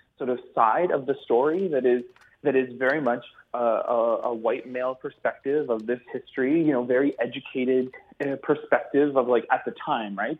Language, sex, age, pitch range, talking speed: English, male, 30-49, 120-155 Hz, 185 wpm